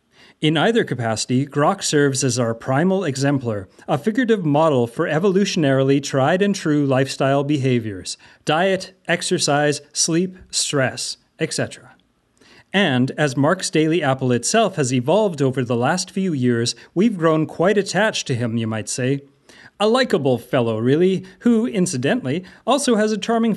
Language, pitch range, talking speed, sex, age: English, 135-185 Hz, 135 wpm, male, 30-49